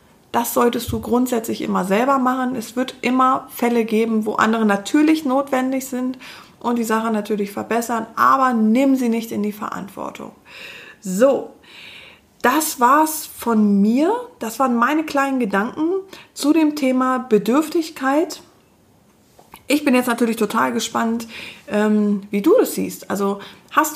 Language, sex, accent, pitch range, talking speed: German, female, German, 220-275 Hz, 140 wpm